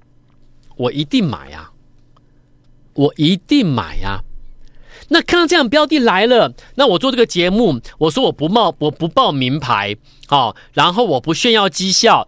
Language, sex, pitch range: Chinese, male, 135-200 Hz